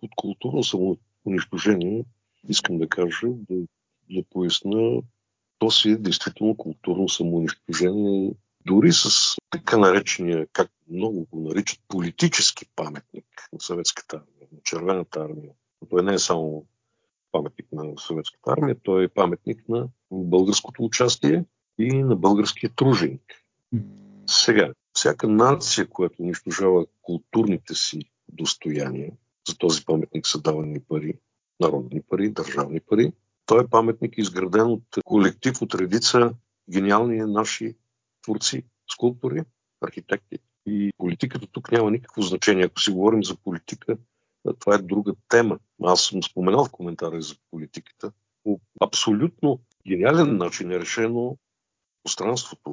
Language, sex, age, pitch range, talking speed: Bulgarian, male, 50-69, 90-115 Hz, 125 wpm